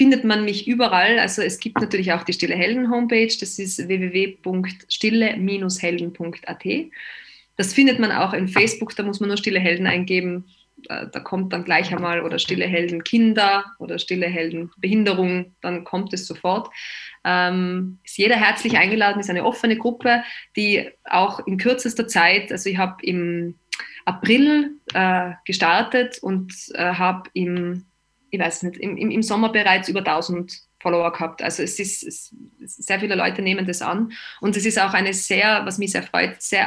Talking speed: 165 wpm